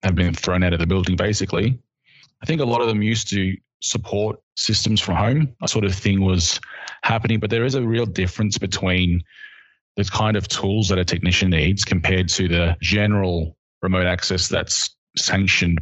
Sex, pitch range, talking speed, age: male, 90-105 Hz, 185 wpm, 20-39